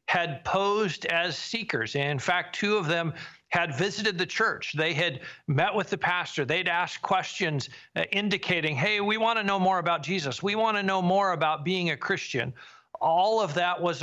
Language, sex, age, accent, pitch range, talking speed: English, male, 50-69, American, 155-185 Hz, 190 wpm